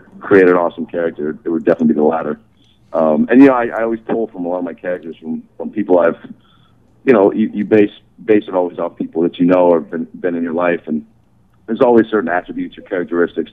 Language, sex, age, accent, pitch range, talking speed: English, male, 40-59, American, 85-115 Hz, 240 wpm